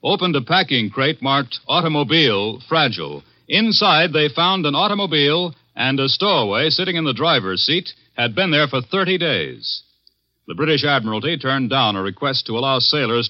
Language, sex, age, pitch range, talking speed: English, male, 60-79, 130-165 Hz, 165 wpm